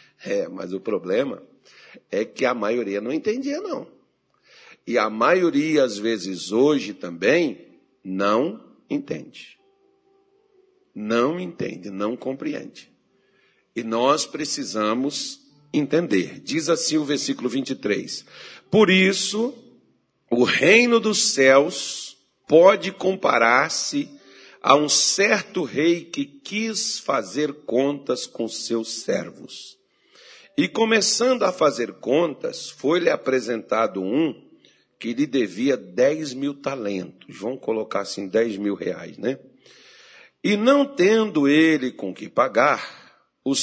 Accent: Brazilian